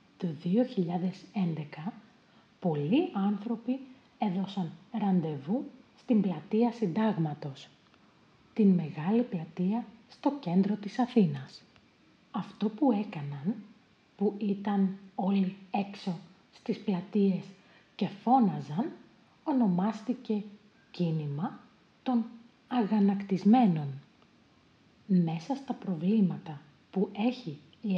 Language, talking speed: Greek, 80 wpm